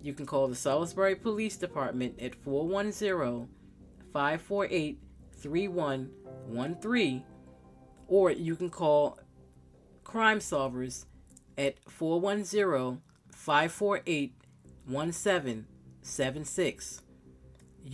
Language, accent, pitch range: English, American, 125-200 Hz